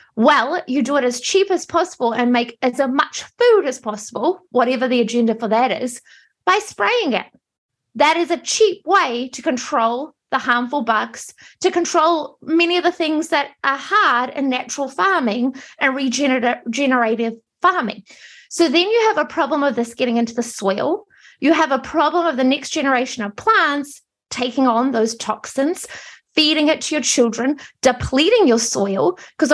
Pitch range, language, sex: 240-320 Hz, English, female